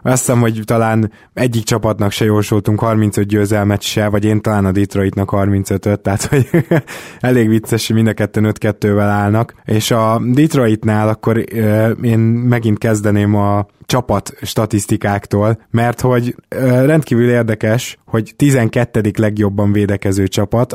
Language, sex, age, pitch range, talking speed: Hungarian, male, 20-39, 100-120 Hz, 130 wpm